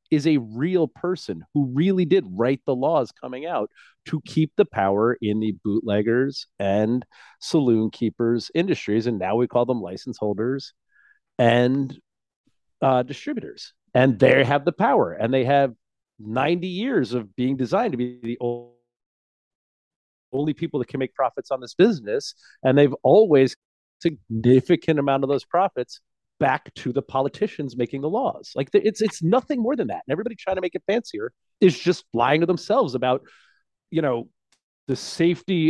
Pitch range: 120-175 Hz